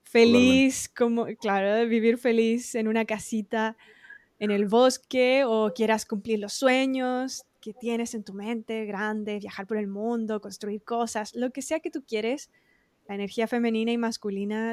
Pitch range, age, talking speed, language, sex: 210-240 Hz, 20-39, 160 wpm, Spanish, female